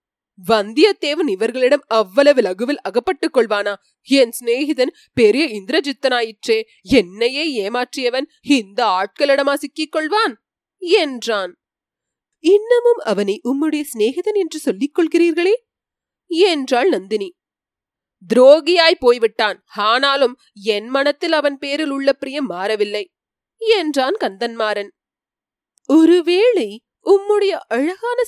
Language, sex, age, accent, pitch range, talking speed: Tamil, female, 30-49, native, 240-380 Hz, 65 wpm